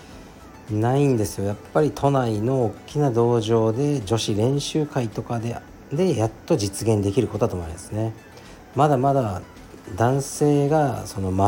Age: 50-69